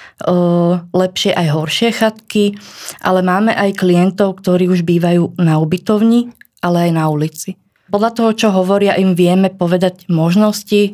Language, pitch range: Slovak, 170-195 Hz